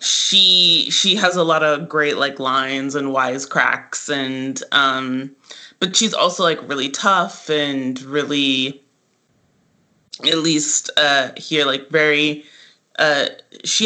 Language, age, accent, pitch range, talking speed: English, 20-39, American, 135-160 Hz, 125 wpm